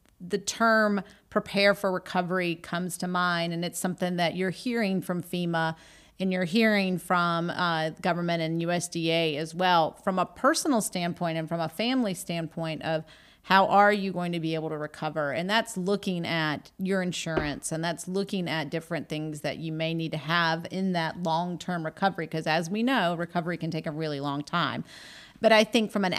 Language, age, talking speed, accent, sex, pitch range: English, 40-59, 195 wpm, American, female, 165-195 Hz